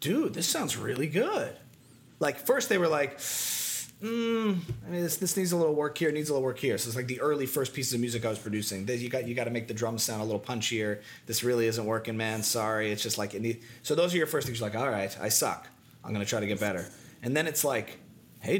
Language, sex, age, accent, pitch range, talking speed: English, male, 30-49, American, 115-175 Hz, 270 wpm